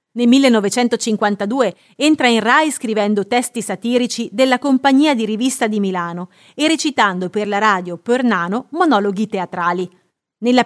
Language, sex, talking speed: Italian, female, 130 wpm